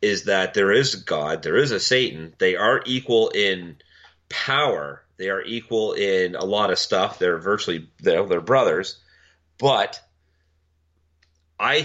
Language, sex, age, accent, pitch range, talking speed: English, male, 30-49, American, 80-110 Hz, 145 wpm